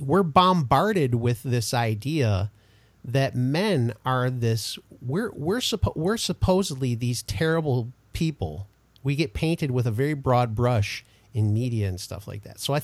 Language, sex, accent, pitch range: English, male, American, 115-150 Hz